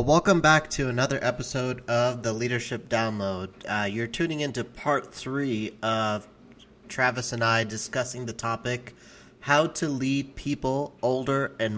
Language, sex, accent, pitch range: English, male, American, 110-125 Hz